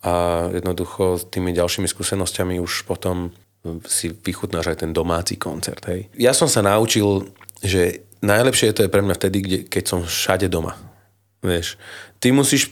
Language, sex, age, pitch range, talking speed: Slovak, male, 30-49, 90-120 Hz, 160 wpm